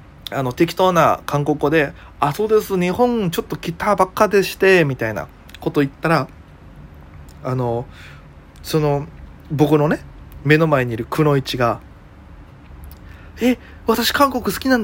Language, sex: Japanese, male